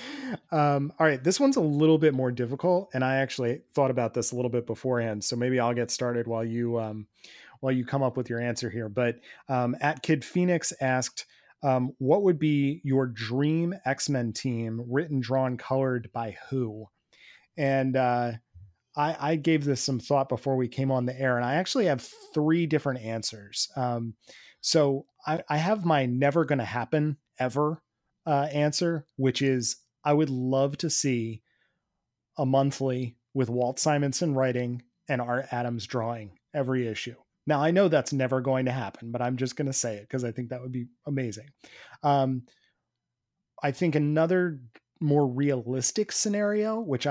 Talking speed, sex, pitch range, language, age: 175 wpm, male, 125-150 Hz, English, 30-49